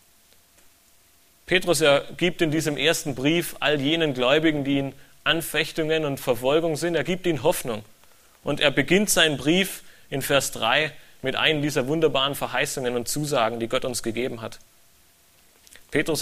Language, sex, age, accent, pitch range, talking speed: German, male, 30-49, German, 115-150 Hz, 150 wpm